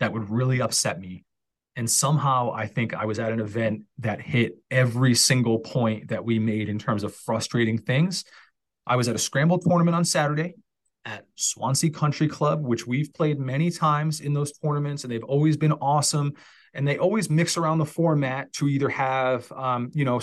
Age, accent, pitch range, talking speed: 30-49, American, 115-150 Hz, 195 wpm